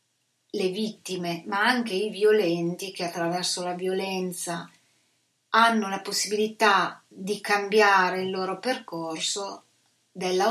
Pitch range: 175-210 Hz